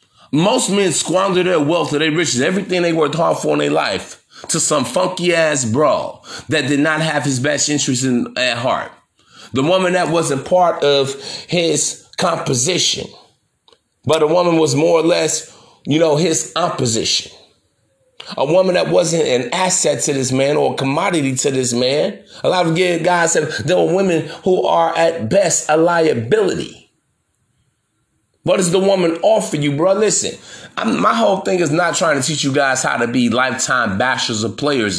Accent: American